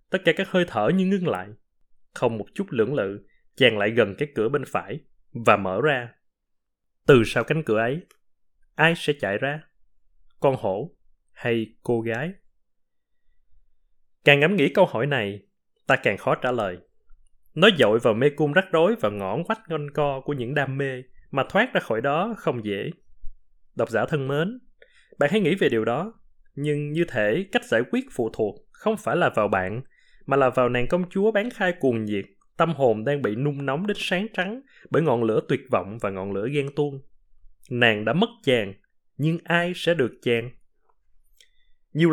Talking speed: 190 wpm